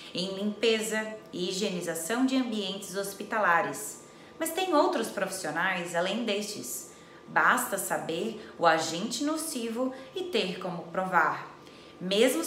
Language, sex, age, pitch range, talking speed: Portuguese, female, 20-39, 180-260 Hz, 110 wpm